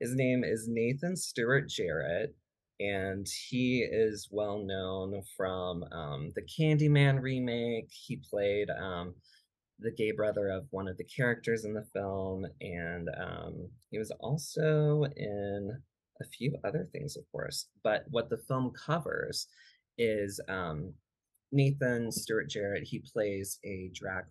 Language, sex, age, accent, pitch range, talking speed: English, male, 20-39, American, 95-125 Hz, 140 wpm